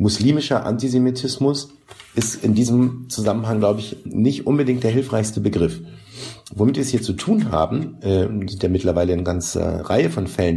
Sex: male